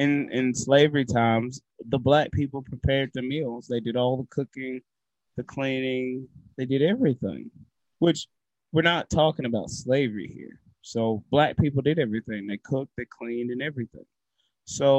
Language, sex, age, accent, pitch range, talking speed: English, male, 30-49, American, 120-150 Hz, 155 wpm